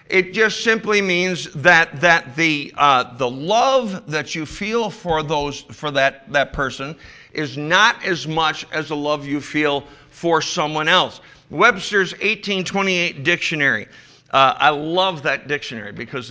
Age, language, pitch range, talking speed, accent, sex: 50-69, English, 135-185 Hz, 145 wpm, American, male